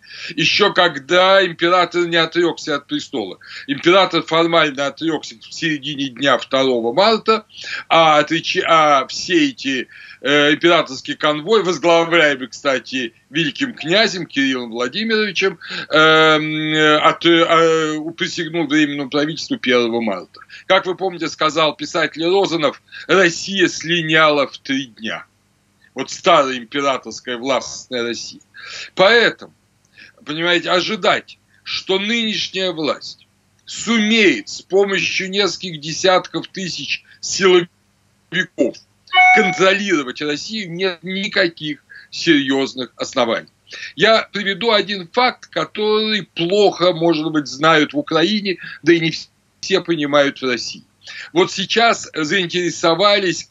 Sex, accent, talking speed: male, native, 100 wpm